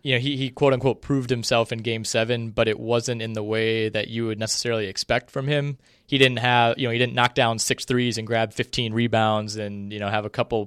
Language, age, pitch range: English, 20-39, 110-125 Hz